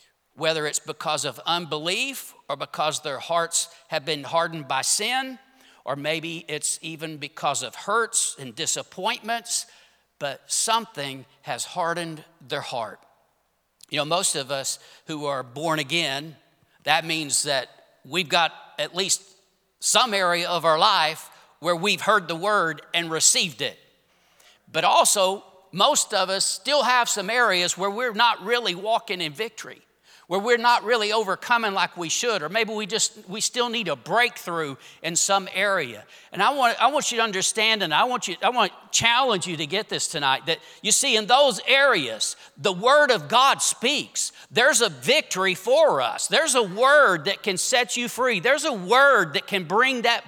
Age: 50-69